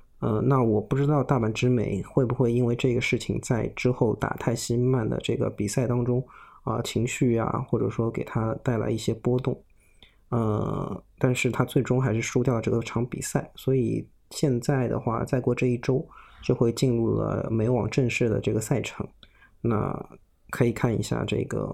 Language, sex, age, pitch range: Chinese, male, 20-39, 110-130 Hz